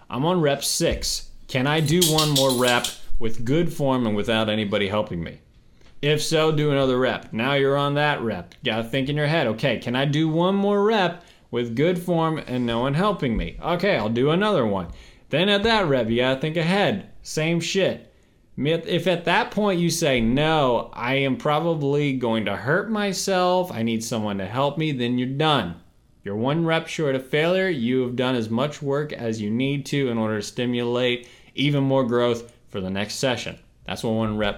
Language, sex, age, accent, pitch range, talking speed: English, male, 20-39, American, 120-160 Hz, 205 wpm